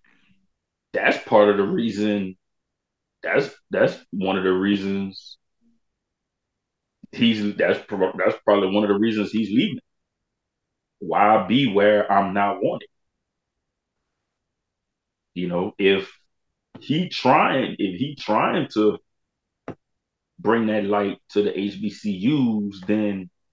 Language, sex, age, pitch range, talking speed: English, male, 30-49, 95-115 Hz, 110 wpm